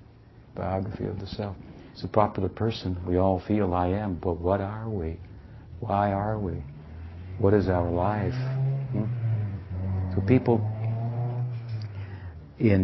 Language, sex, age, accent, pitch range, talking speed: English, male, 60-79, American, 85-105 Hz, 130 wpm